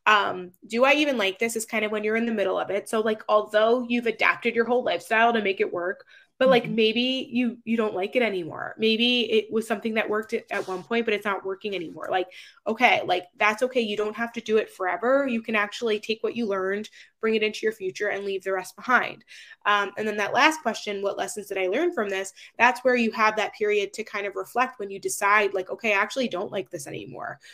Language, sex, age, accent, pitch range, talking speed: English, female, 20-39, American, 200-250 Hz, 250 wpm